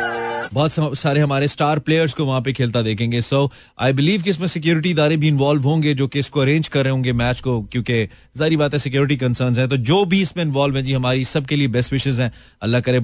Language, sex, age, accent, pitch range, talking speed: Hindi, male, 30-49, native, 130-170 Hz, 110 wpm